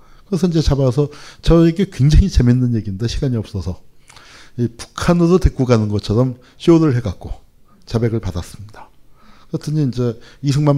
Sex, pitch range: male, 110-145 Hz